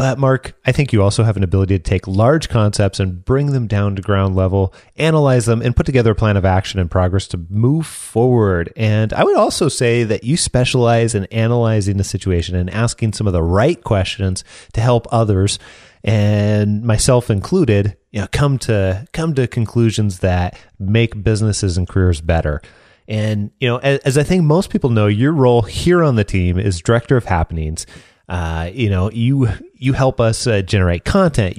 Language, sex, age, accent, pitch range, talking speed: English, male, 30-49, American, 100-130 Hz, 195 wpm